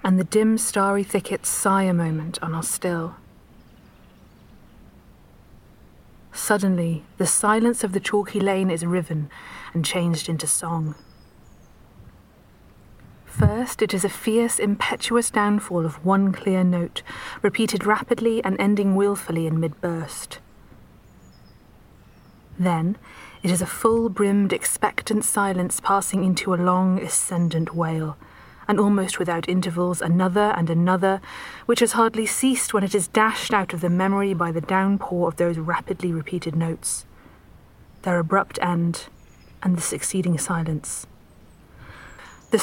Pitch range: 170-205 Hz